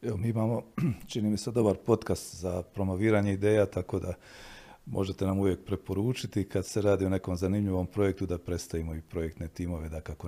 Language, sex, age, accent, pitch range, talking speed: Croatian, male, 50-69, native, 90-105 Hz, 180 wpm